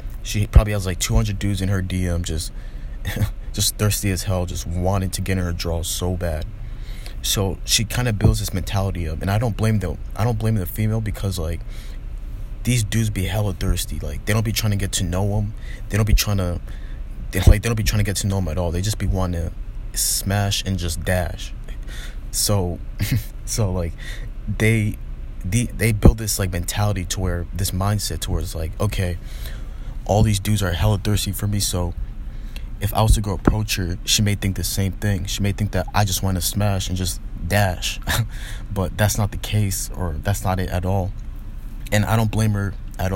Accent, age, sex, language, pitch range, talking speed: American, 20-39, male, English, 90-110 Hz, 215 wpm